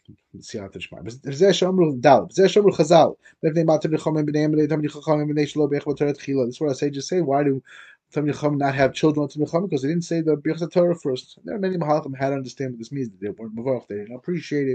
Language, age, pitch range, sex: English, 30-49, 140-175 Hz, male